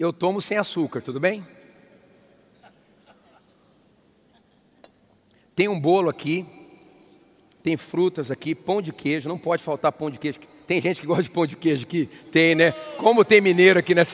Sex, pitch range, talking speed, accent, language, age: male, 145-180 Hz, 160 wpm, Brazilian, Portuguese, 40-59